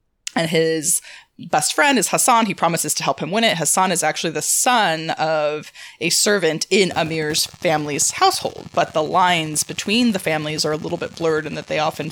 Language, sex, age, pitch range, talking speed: English, female, 20-39, 150-185 Hz, 200 wpm